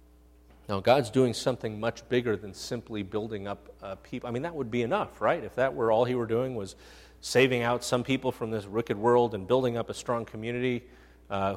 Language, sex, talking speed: English, male, 215 wpm